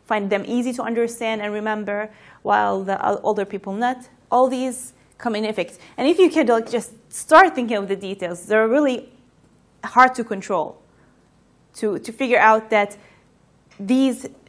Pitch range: 210-255 Hz